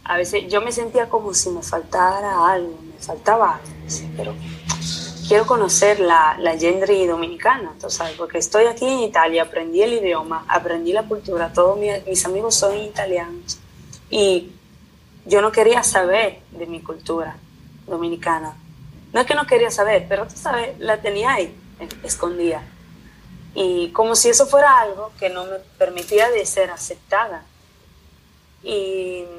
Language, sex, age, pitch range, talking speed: Spanish, female, 20-39, 165-195 Hz, 150 wpm